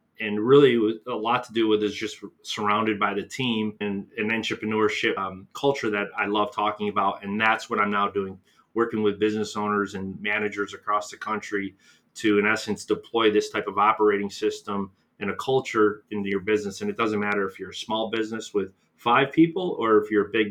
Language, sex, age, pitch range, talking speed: English, male, 30-49, 100-115 Hz, 205 wpm